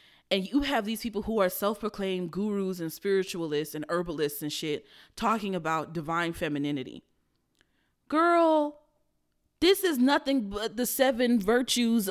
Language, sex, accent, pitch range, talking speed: English, female, American, 200-285 Hz, 140 wpm